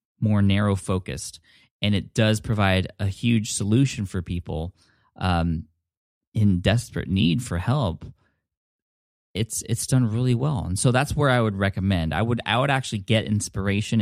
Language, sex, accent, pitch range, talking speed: English, male, American, 95-115 Hz, 160 wpm